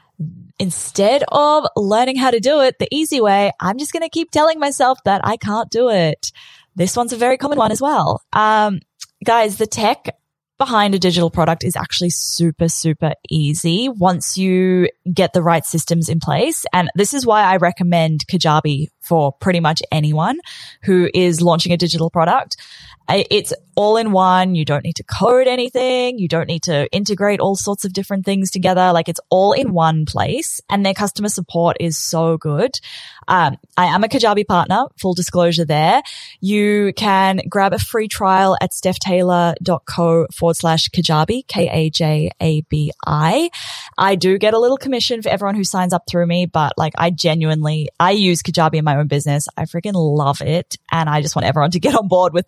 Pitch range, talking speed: 165-210 Hz, 185 wpm